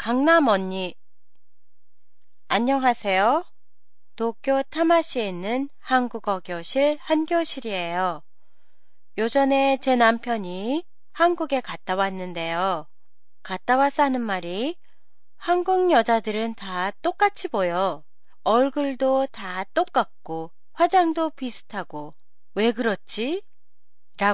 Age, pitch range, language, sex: 30-49, 185-290 Hz, Japanese, female